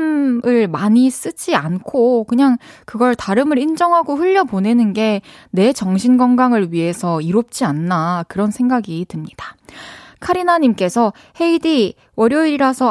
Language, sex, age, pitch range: Korean, female, 20-39, 190-275 Hz